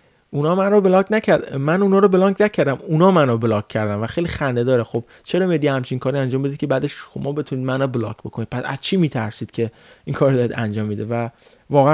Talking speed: 230 wpm